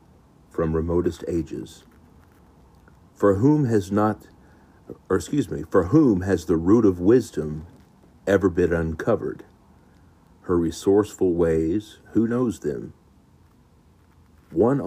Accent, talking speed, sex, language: American, 110 wpm, male, English